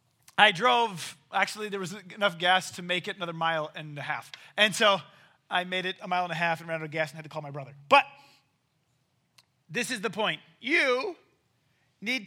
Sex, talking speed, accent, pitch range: male, 210 wpm, American, 155-225 Hz